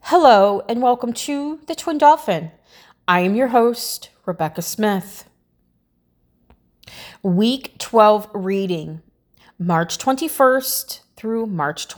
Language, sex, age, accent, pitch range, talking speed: English, female, 30-49, American, 175-235 Hz, 100 wpm